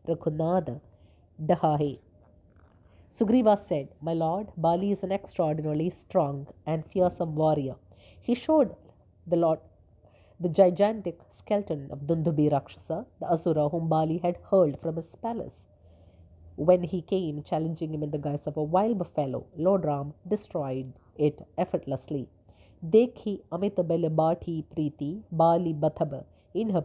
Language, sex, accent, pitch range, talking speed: English, female, Indian, 145-180 Hz, 125 wpm